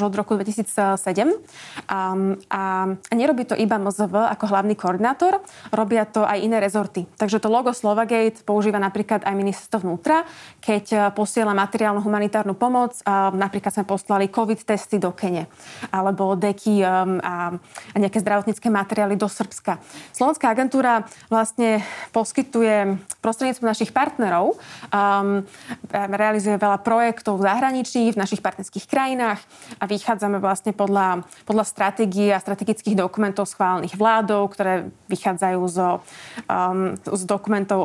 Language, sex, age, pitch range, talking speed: Slovak, female, 20-39, 195-220 Hz, 125 wpm